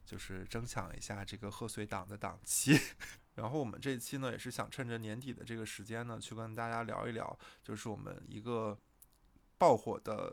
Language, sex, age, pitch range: Chinese, male, 20-39, 105-130 Hz